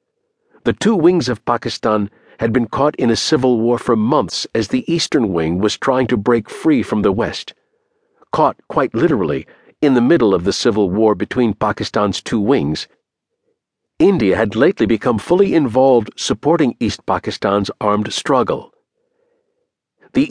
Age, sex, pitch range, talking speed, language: 50-69, male, 110-170 Hz, 155 wpm, English